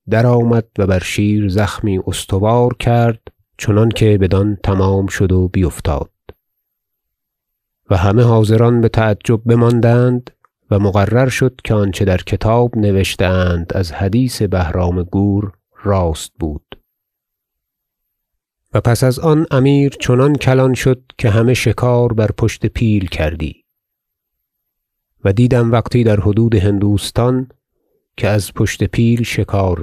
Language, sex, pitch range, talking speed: Persian, male, 95-115 Hz, 125 wpm